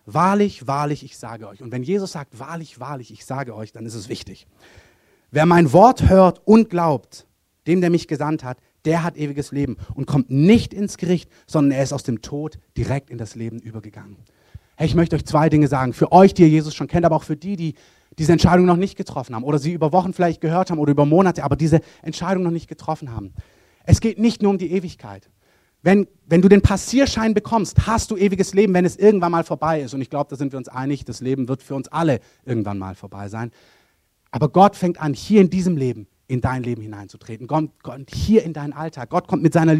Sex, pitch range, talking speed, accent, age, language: male, 125-170 Hz, 230 wpm, German, 30-49, German